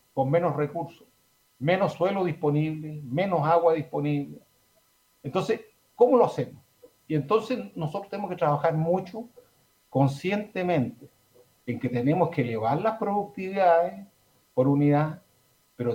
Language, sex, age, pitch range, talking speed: Spanish, male, 50-69, 135-185 Hz, 115 wpm